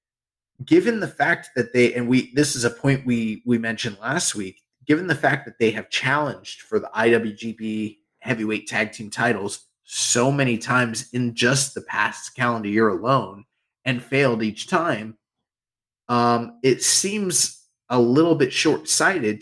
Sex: male